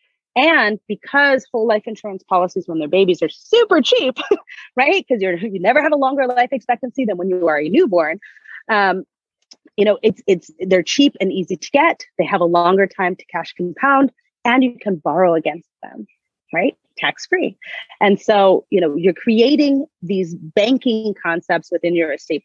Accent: American